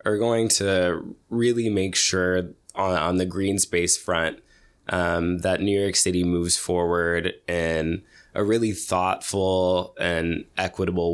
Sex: male